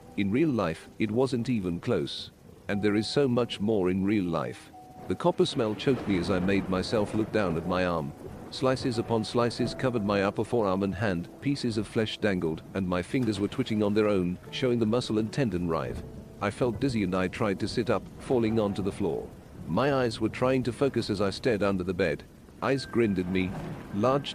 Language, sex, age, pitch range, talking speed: English, male, 50-69, 100-125 Hz, 215 wpm